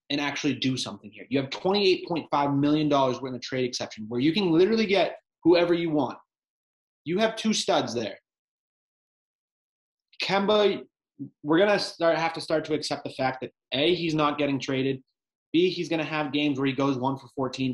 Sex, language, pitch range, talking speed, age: male, English, 130-155 Hz, 185 wpm, 20-39